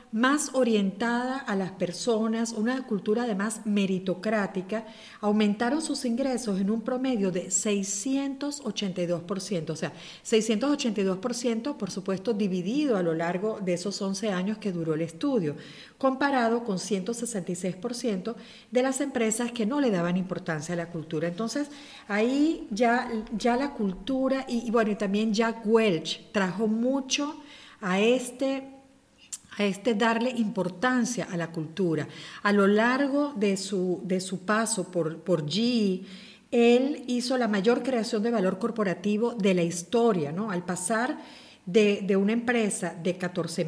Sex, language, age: female, Spanish, 40-59